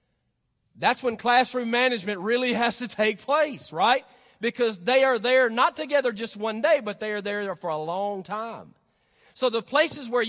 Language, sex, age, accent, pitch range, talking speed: English, male, 40-59, American, 195-245 Hz, 180 wpm